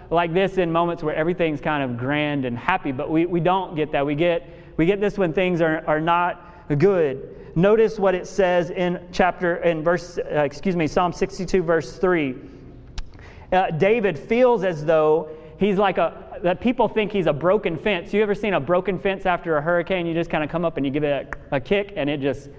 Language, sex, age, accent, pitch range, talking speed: English, male, 30-49, American, 165-210 Hz, 220 wpm